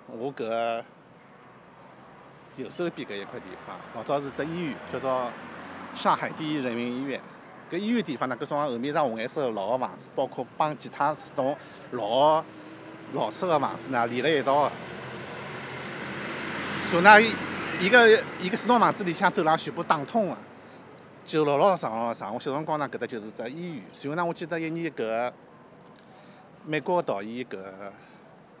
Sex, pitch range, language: male, 120-170 Hz, English